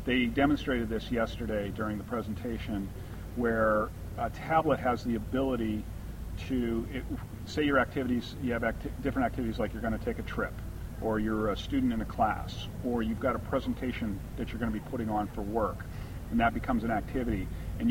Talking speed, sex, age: 190 wpm, male, 40-59